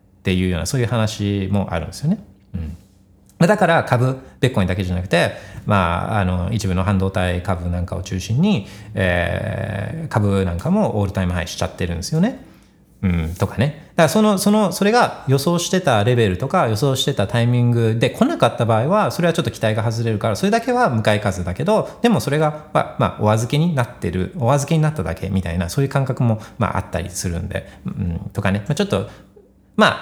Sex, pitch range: male, 95-135 Hz